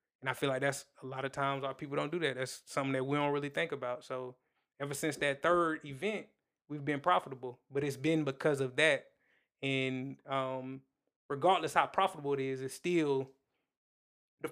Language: English